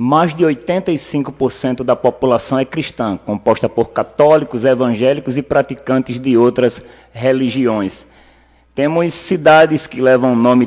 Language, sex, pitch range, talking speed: Portuguese, male, 125-165 Hz, 125 wpm